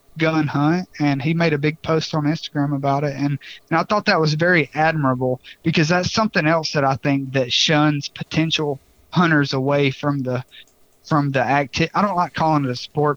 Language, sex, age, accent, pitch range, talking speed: English, male, 30-49, American, 140-165 Hz, 200 wpm